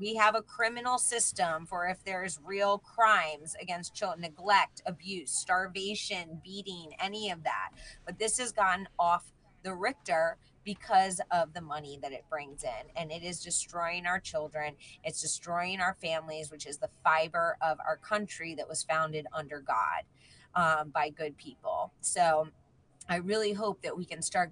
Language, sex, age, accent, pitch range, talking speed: English, female, 30-49, American, 155-185 Hz, 165 wpm